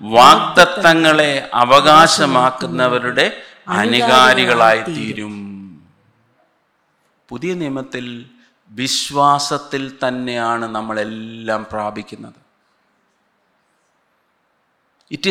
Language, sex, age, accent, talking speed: Malayalam, male, 50-69, native, 45 wpm